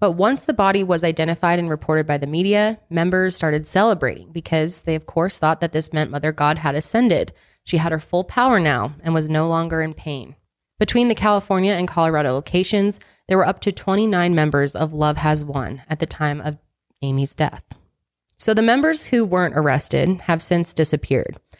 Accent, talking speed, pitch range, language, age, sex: American, 190 wpm, 150-195 Hz, English, 20-39, female